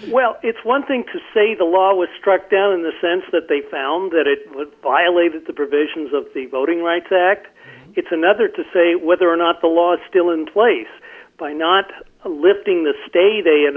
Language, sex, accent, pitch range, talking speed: English, male, American, 160-235 Hz, 205 wpm